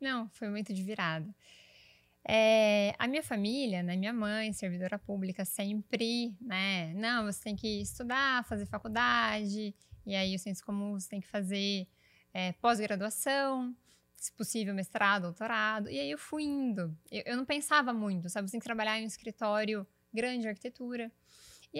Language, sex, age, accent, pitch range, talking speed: Portuguese, female, 20-39, Brazilian, 195-255 Hz, 170 wpm